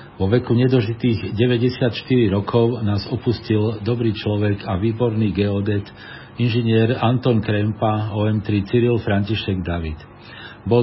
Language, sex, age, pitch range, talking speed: Slovak, male, 50-69, 100-115 Hz, 110 wpm